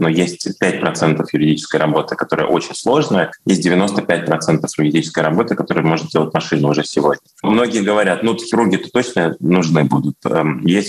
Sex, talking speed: male, 130 wpm